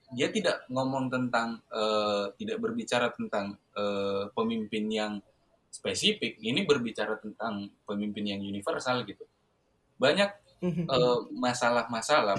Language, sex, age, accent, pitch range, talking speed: Indonesian, male, 10-29, native, 110-165 Hz, 105 wpm